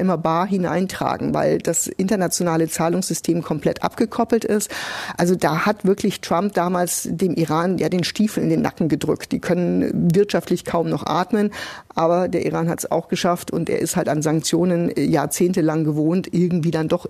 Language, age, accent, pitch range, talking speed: German, 50-69, German, 175-220 Hz, 170 wpm